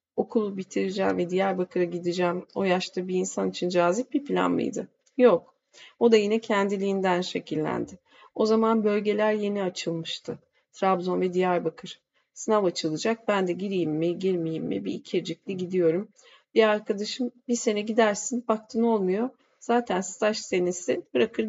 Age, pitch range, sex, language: 40-59, 185-235 Hz, female, Turkish